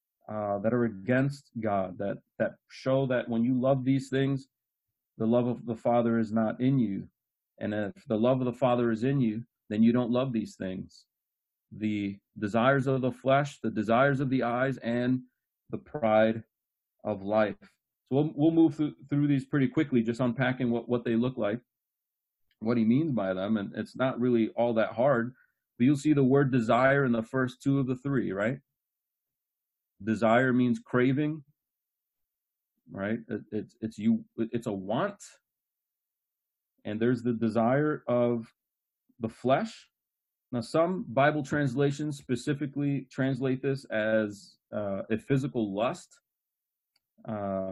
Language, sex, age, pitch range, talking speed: English, male, 30-49, 110-135 Hz, 160 wpm